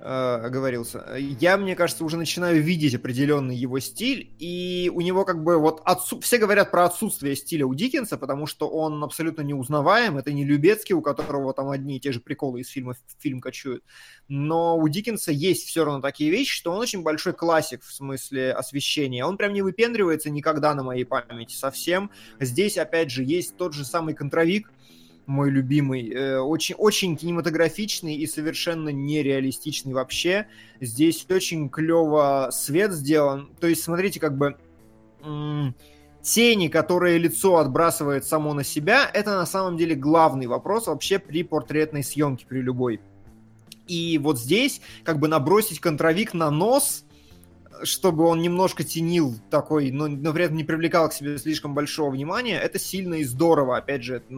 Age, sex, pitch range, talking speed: 20-39, male, 135-170 Hz, 160 wpm